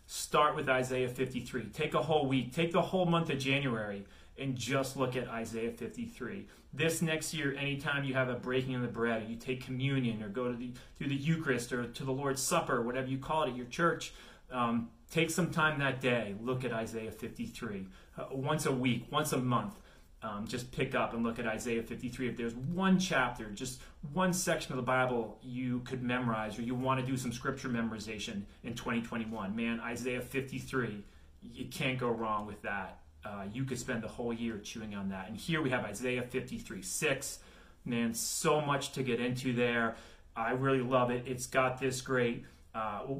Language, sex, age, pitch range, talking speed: English, male, 30-49, 115-135 Hz, 200 wpm